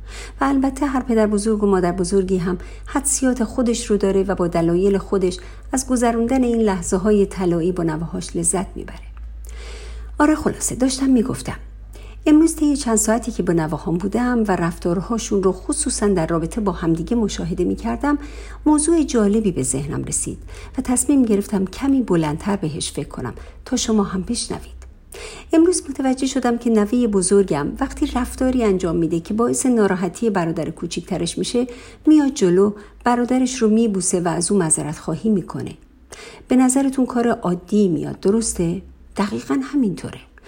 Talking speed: 150 wpm